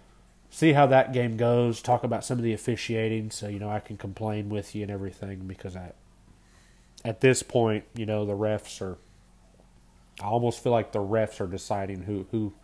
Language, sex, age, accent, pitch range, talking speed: English, male, 30-49, American, 100-120 Hz, 195 wpm